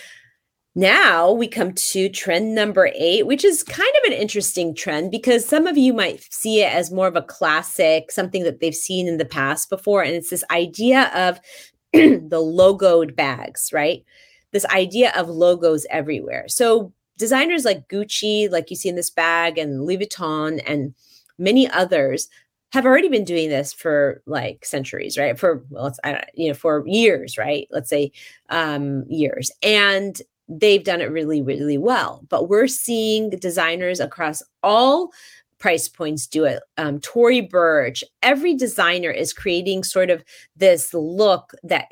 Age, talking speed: 30-49, 165 wpm